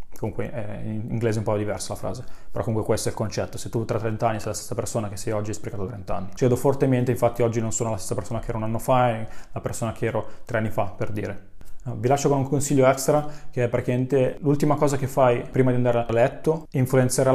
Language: Italian